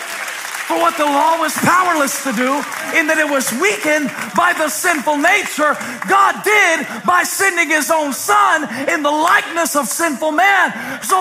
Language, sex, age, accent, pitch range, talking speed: English, male, 40-59, American, 270-390 Hz, 160 wpm